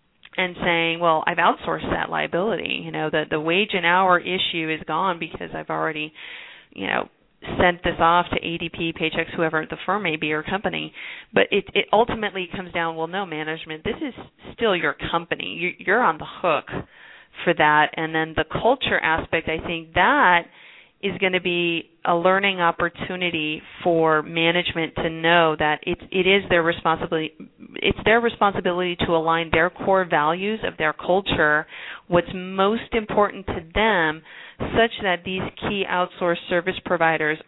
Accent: American